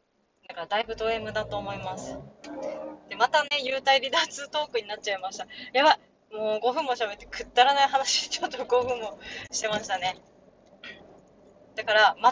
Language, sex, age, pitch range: Japanese, female, 20-39, 205-270 Hz